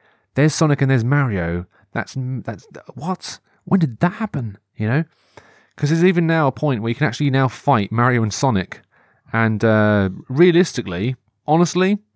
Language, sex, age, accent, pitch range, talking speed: English, male, 30-49, British, 110-155 Hz, 165 wpm